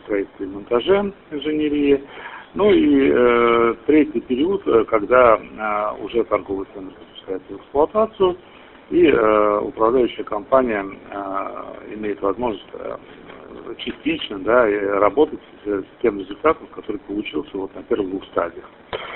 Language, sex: Russian, male